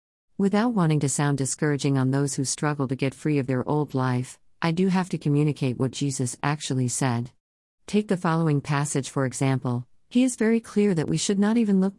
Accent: American